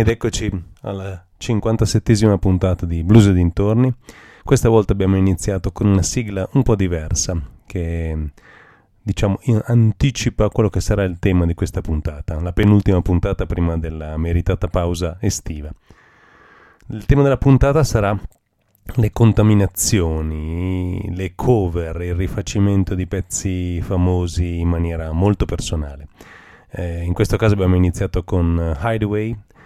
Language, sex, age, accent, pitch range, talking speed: Italian, male, 30-49, native, 85-105 Hz, 130 wpm